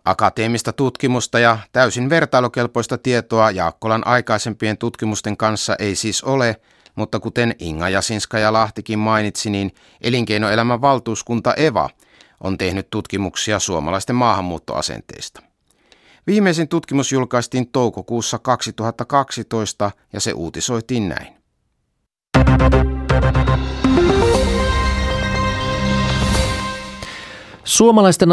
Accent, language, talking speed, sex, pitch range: native, Finnish, 85 wpm, male, 100-125 Hz